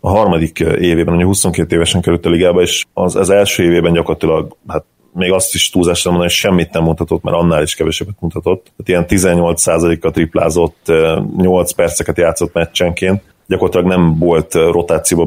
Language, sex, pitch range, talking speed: Hungarian, male, 85-95 Hz, 165 wpm